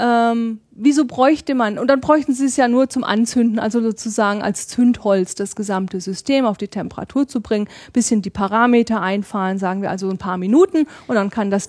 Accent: German